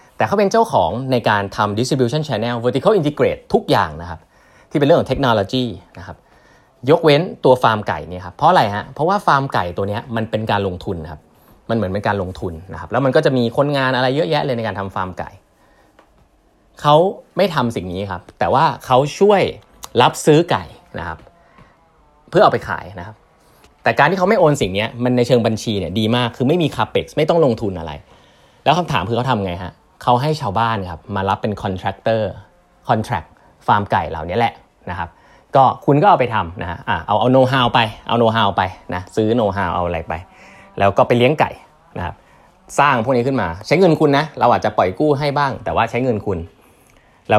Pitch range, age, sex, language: 100-130 Hz, 20-39, male, Thai